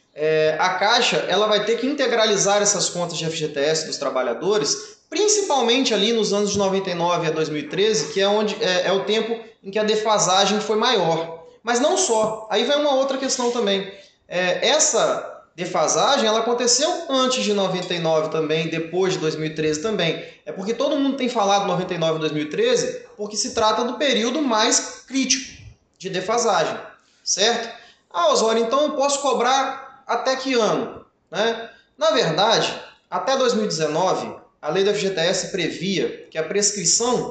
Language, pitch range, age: Portuguese, 175-245 Hz, 20-39